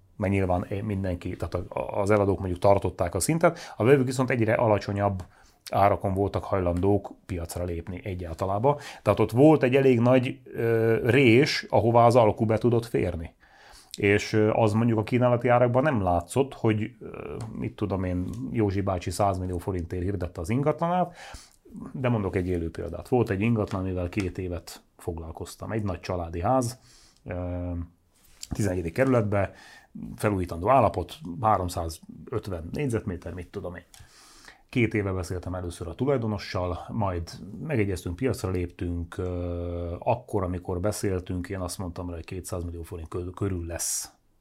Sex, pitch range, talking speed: male, 90-115 Hz, 135 wpm